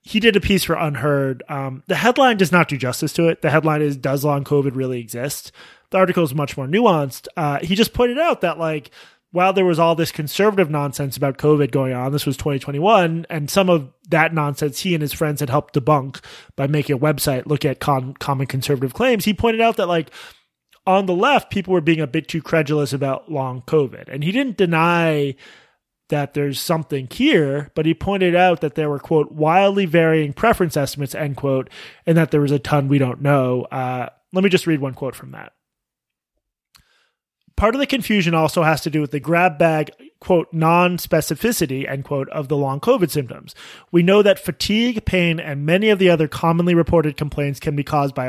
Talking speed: 210 wpm